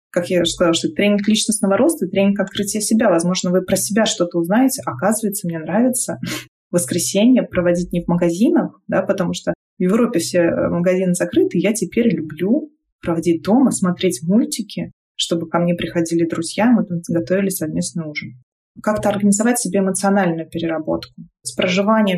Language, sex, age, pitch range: Russian, female, 20-39, 175-215 Hz